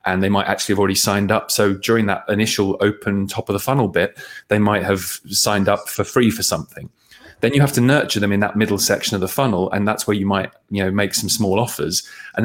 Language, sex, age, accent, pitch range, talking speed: English, male, 30-49, British, 95-110 Hz, 250 wpm